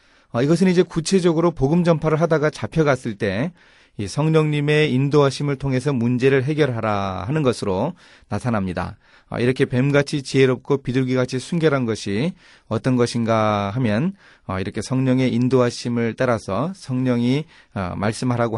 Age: 30-49